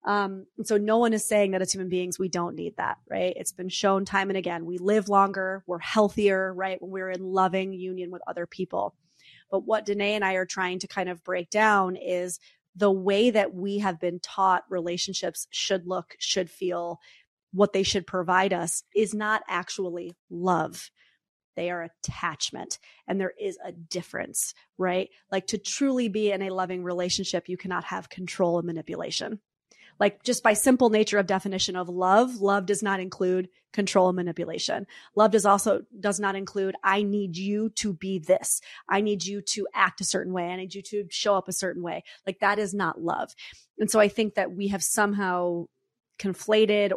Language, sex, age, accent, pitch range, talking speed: English, female, 30-49, American, 180-205 Hz, 195 wpm